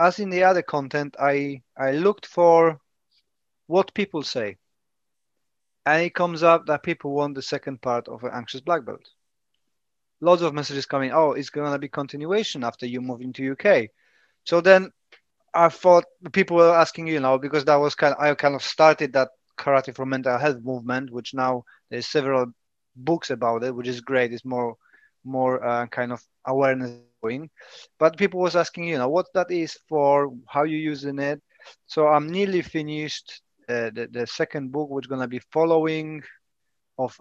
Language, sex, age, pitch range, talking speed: English, male, 30-49, 130-165 Hz, 175 wpm